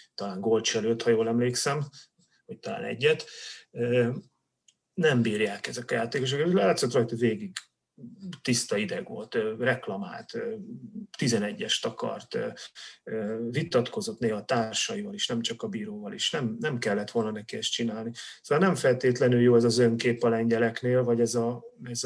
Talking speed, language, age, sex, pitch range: 140 wpm, Hungarian, 30-49, male, 115-135 Hz